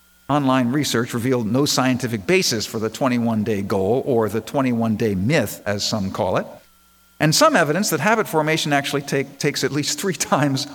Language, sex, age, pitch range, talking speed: English, male, 50-69, 130-200 Hz, 165 wpm